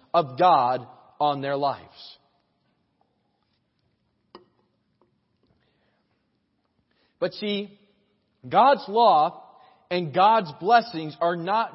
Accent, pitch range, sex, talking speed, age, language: American, 175-220 Hz, male, 70 wpm, 30-49, English